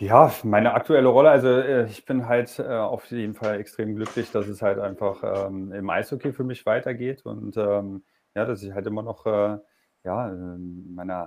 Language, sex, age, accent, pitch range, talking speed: German, male, 30-49, German, 95-105 Hz, 190 wpm